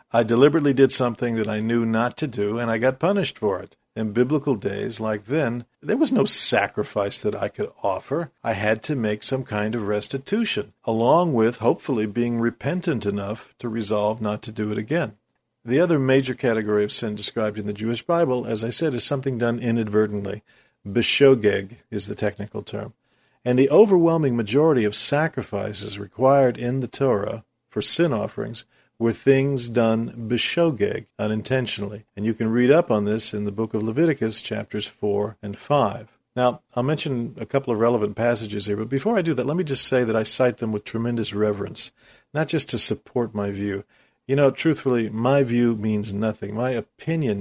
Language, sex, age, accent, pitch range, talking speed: English, male, 50-69, American, 105-130 Hz, 185 wpm